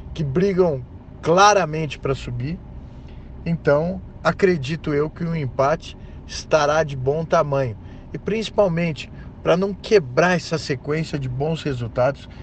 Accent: Brazilian